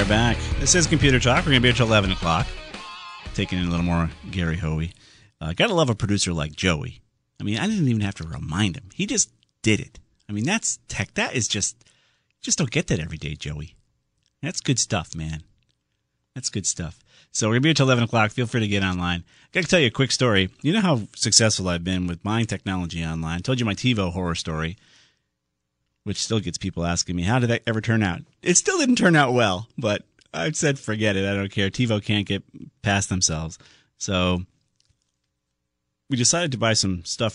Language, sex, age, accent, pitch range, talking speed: English, male, 40-59, American, 85-130 Hz, 215 wpm